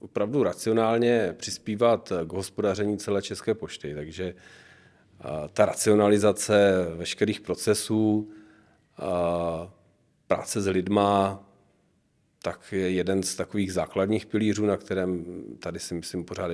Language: Czech